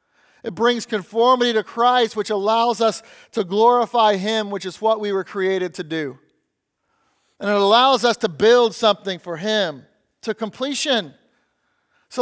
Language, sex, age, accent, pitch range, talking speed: English, male, 40-59, American, 200-250 Hz, 150 wpm